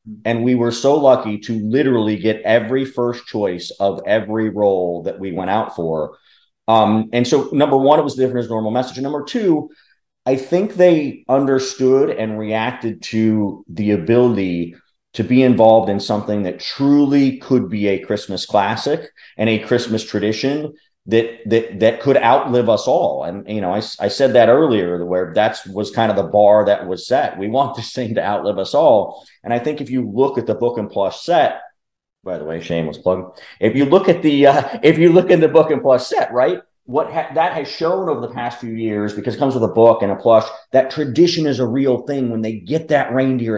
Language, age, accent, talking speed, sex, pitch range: English, 30-49, American, 210 wpm, male, 105-135 Hz